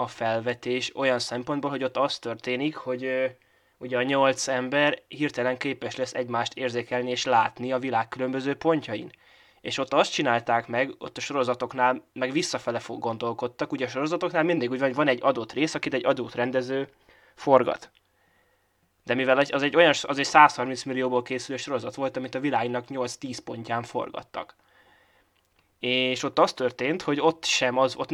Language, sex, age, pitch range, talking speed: Hungarian, male, 20-39, 125-145 Hz, 165 wpm